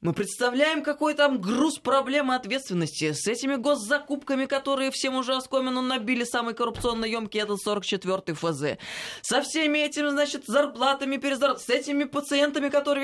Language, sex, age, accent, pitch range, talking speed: Russian, female, 20-39, native, 205-275 Hz, 145 wpm